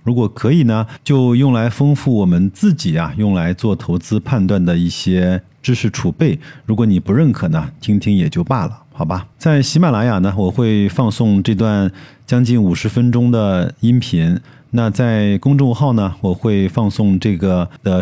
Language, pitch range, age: Chinese, 95-130 Hz, 50-69